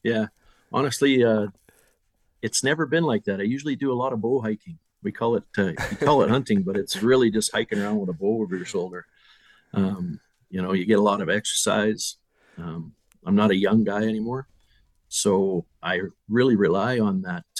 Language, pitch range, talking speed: English, 90-115 Hz, 200 wpm